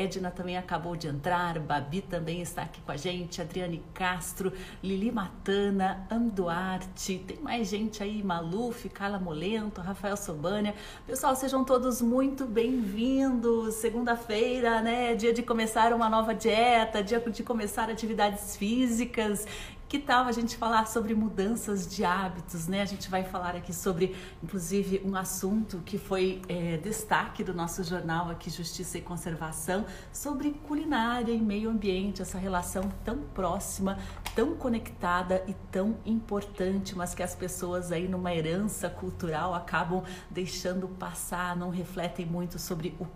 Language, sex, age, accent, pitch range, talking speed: Portuguese, female, 40-59, Brazilian, 175-220 Hz, 145 wpm